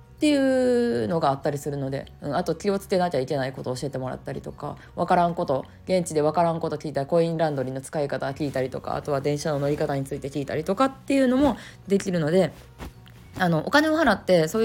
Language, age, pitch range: Japanese, 20-39, 145-190 Hz